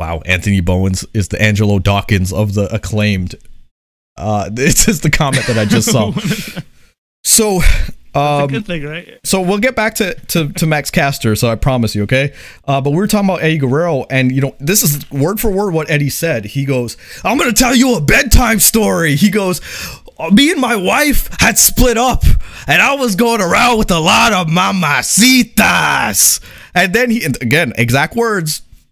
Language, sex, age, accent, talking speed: English, male, 30-49, American, 185 wpm